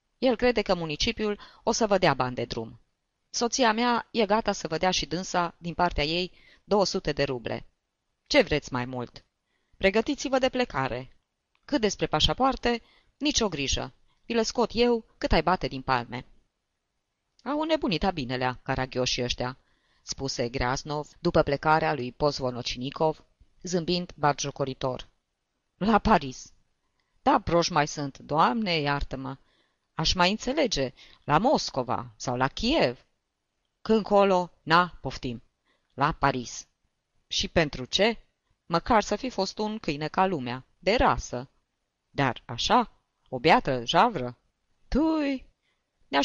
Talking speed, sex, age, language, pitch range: 135 wpm, female, 20-39, Romanian, 130-205 Hz